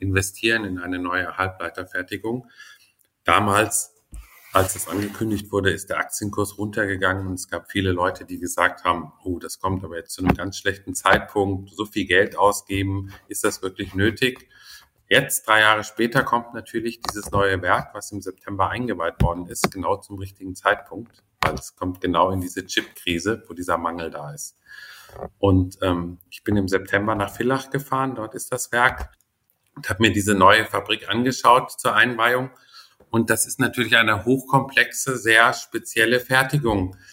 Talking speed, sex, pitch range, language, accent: 165 wpm, male, 95-120 Hz, German, German